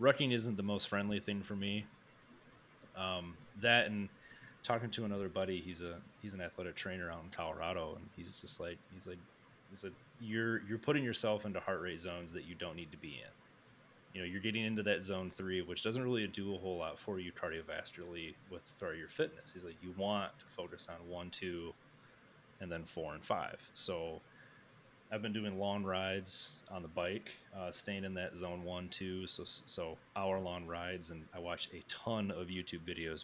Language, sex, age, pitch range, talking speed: English, male, 30-49, 85-105 Hz, 200 wpm